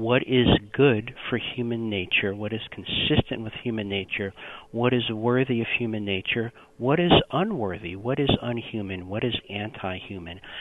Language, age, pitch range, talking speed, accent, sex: English, 50-69, 105-130 Hz, 155 wpm, American, male